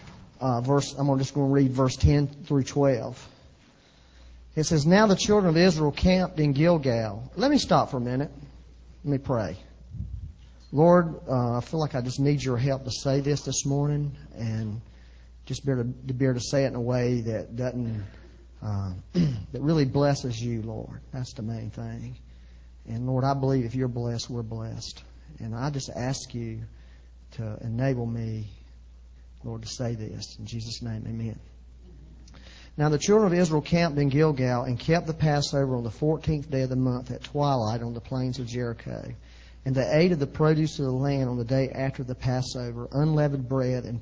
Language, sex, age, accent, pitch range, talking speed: English, male, 40-59, American, 110-145 Hz, 190 wpm